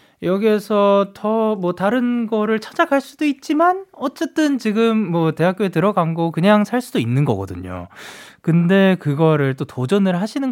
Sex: male